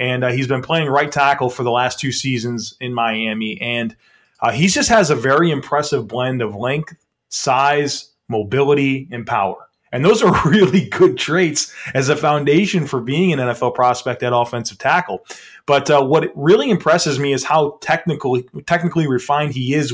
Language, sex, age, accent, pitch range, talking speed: English, male, 30-49, American, 125-150 Hz, 180 wpm